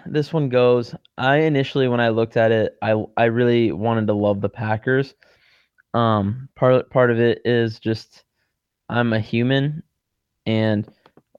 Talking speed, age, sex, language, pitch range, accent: 155 wpm, 20-39, male, English, 110-130 Hz, American